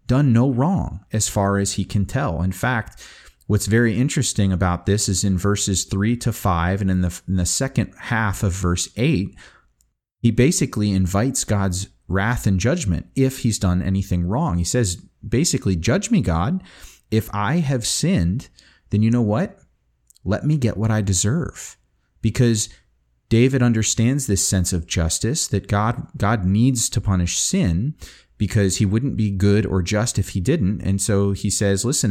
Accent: American